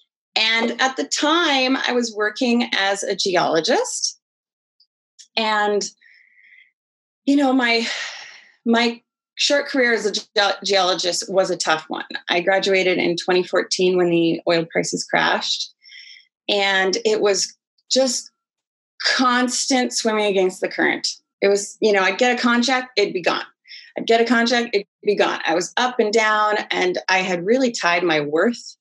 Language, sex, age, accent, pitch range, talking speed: English, female, 30-49, American, 185-255 Hz, 150 wpm